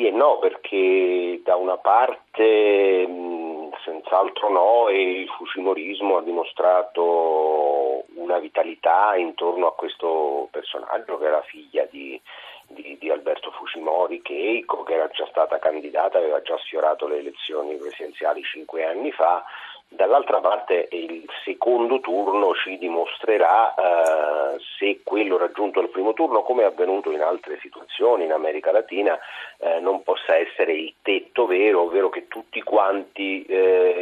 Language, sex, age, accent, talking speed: Italian, male, 40-59, native, 140 wpm